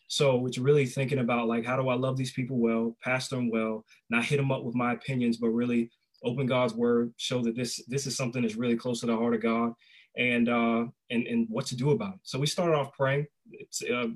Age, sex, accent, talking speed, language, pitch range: 20-39, male, American, 245 wpm, English, 115-130 Hz